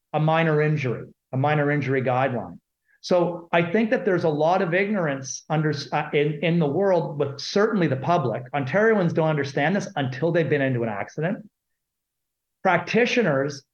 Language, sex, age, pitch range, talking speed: English, male, 40-59, 145-190 Hz, 160 wpm